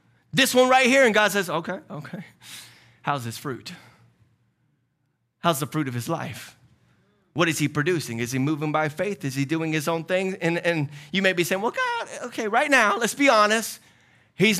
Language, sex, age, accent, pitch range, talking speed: English, male, 30-49, American, 150-245 Hz, 195 wpm